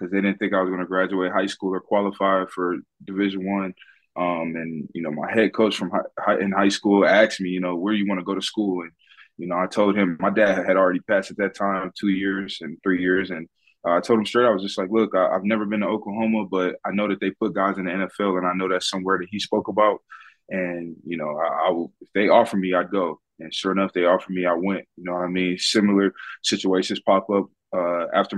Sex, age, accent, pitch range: male, 20-39, American, 90-100 Hz